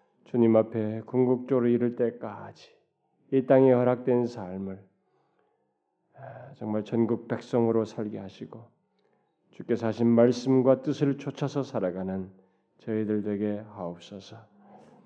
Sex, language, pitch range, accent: male, Korean, 115-125 Hz, native